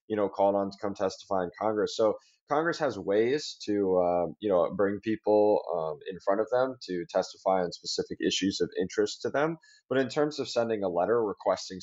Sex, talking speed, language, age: male, 210 wpm, English, 20-39